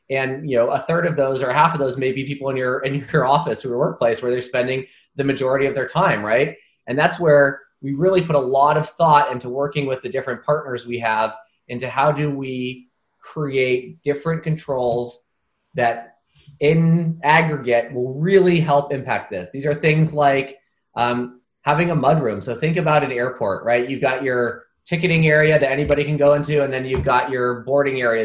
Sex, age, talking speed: male, 20-39, 200 wpm